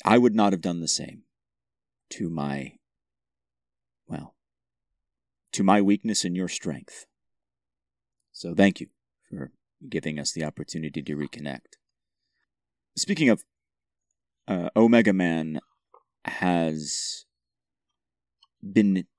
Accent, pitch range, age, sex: American, 75-95 Hz, 30-49, male